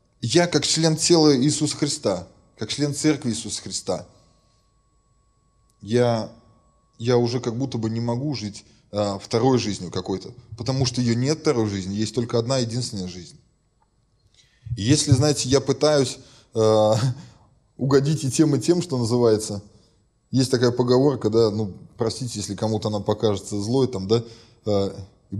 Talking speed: 145 wpm